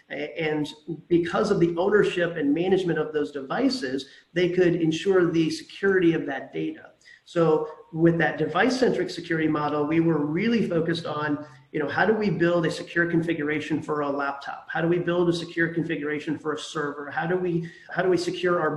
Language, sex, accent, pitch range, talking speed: English, male, American, 150-175 Hz, 190 wpm